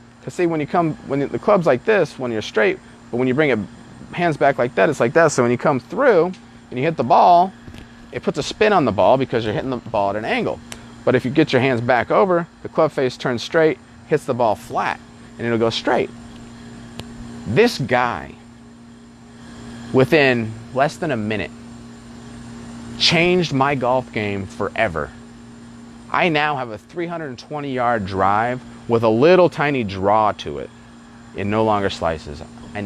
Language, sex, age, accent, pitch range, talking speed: English, male, 30-49, American, 115-140 Hz, 185 wpm